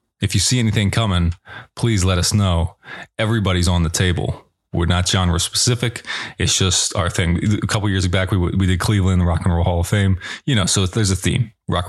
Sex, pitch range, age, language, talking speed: male, 90-110 Hz, 20-39, English, 225 wpm